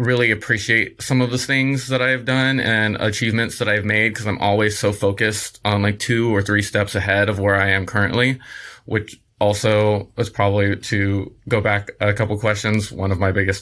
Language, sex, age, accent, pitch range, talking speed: English, male, 20-39, American, 100-115 Hz, 200 wpm